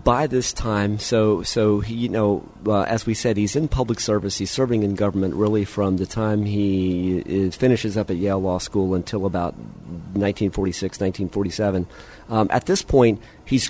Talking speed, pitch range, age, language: 175 wpm, 95-115 Hz, 50-69, English